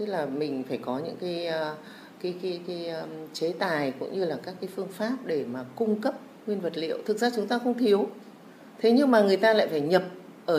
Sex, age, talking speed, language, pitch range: female, 30-49, 230 wpm, Vietnamese, 160-215 Hz